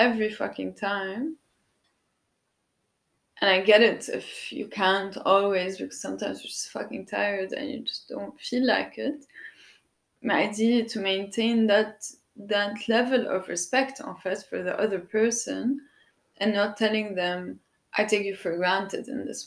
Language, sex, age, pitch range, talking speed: English, female, 20-39, 190-235 Hz, 160 wpm